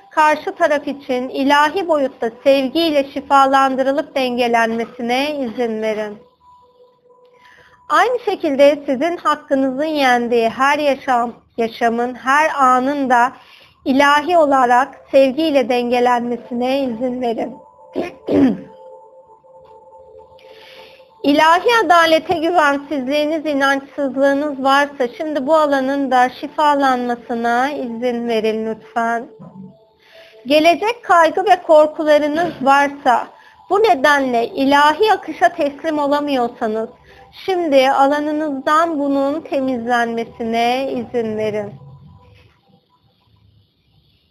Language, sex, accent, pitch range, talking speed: Turkish, female, native, 240-325 Hz, 75 wpm